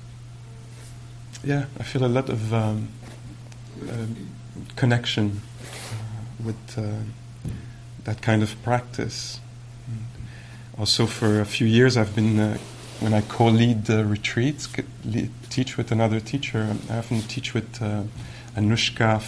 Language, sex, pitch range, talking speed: English, male, 110-120 Hz, 130 wpm